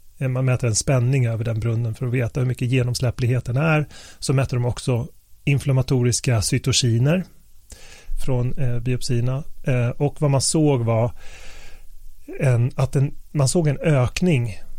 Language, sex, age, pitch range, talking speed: Swedish, male, 30-49, 115-135 Hz, 140 wpm